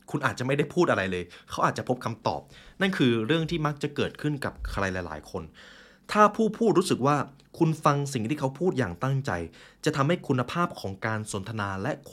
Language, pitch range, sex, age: Thai, 100-150 Hz, male, 20-39